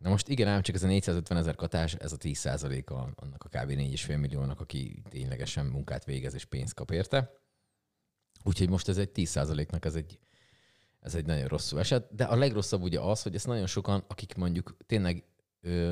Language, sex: Hungarian, male